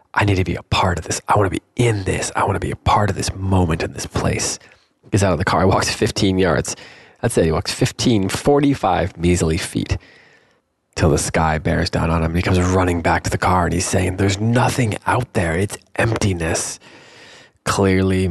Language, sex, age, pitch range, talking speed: English, male, 20-39, 90-110 Hz, 225 wpm